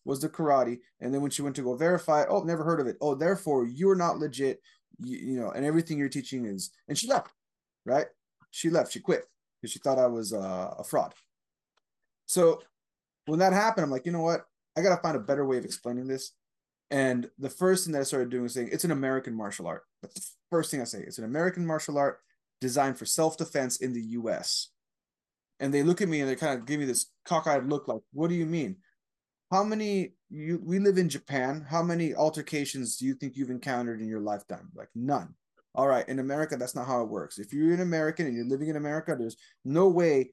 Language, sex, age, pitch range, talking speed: English, male, 20-39, 130-170 Hz, 230 wpm